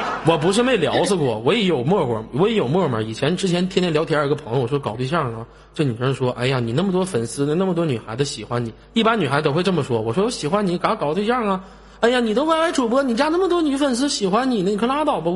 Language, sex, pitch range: Chinese, male, 135-220 Hz